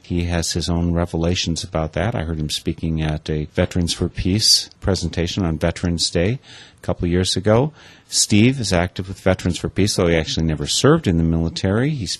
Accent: American